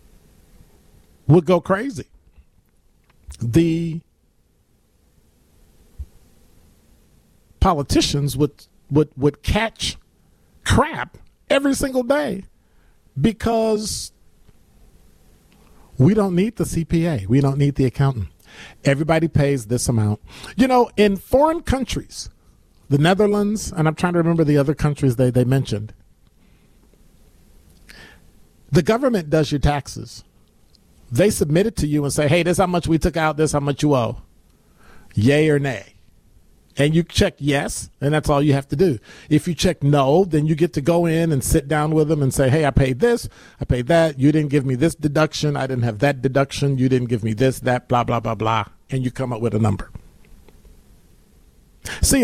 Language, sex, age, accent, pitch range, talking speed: English, male, 50-69, American, 105-165 Hz, 160 wpm